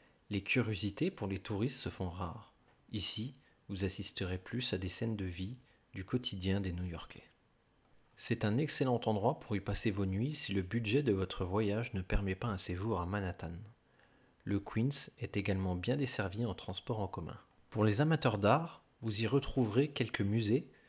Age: 40-59